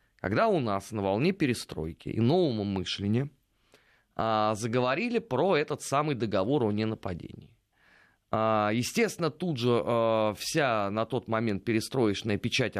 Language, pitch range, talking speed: Russian, 105-140 Hz, 130 wpm